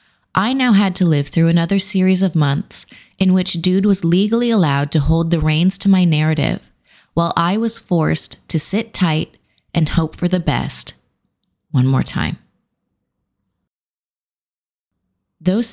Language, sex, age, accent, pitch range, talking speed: English, female, 20-39, American, 155-185 Hz, 150 wpm